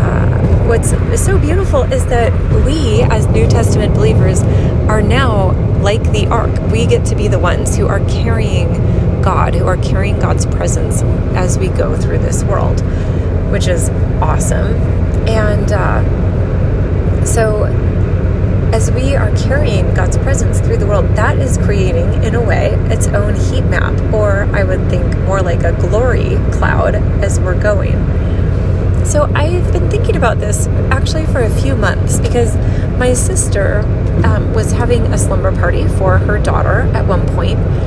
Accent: American